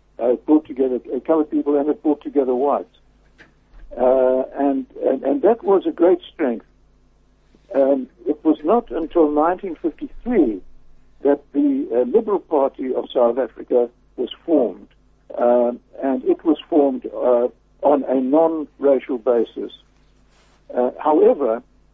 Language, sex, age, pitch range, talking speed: English, male, 60-79, 135-200 Hz, 130 wpm